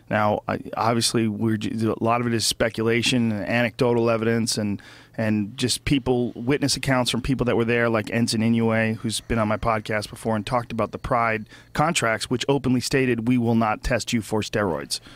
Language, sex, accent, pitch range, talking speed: English, male, American, 110-125 Hz, 195 wpm